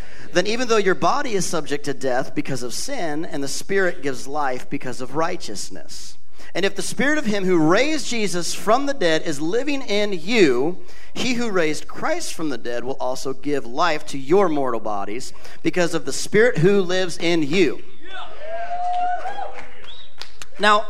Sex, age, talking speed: male, 40-59, 170 wpm